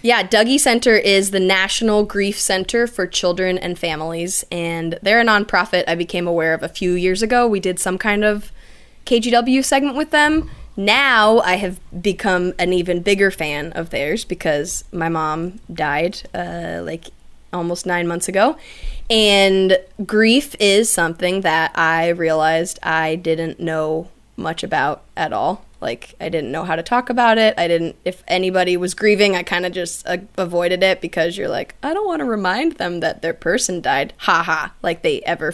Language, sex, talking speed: English, female, 180 wpm